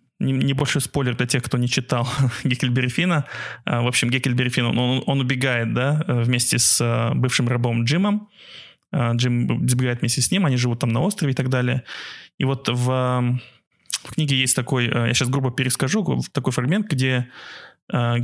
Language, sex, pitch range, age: Russian, male, 120-140 Hz, 20-39